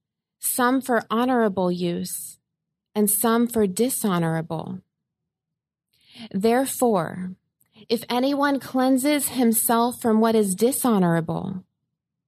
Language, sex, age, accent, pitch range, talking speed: English, female, 30-49, American, 185-235 Hz, 85 wpm